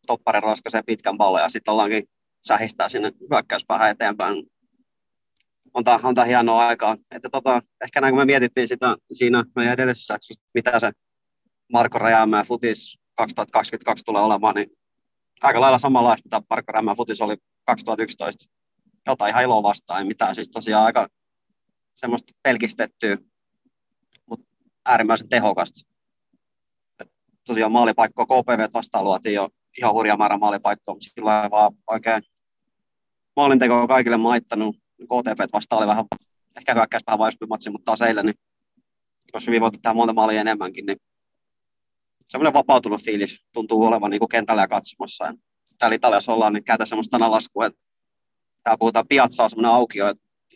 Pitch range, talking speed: 110-120 Hz, 135 wpm